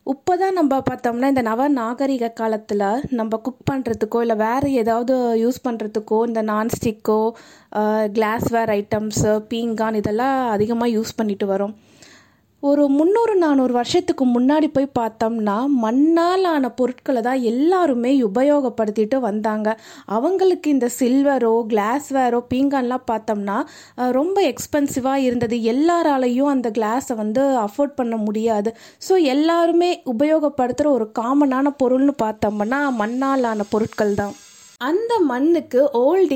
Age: 20-39